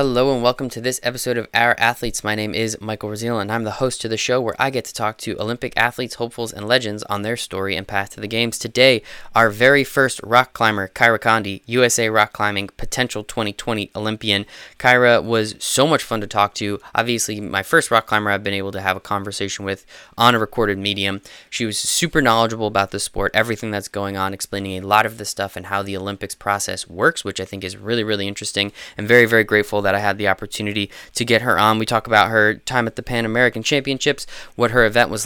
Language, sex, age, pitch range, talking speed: English, male, 10-29, 100-120 Hz, 230 wpm